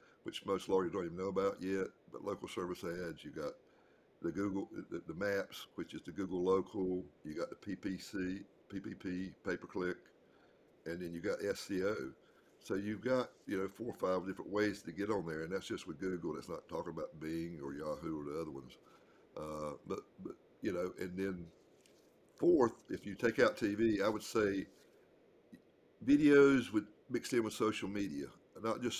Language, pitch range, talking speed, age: English, 90-100 Hz, 185 wpm, 60-79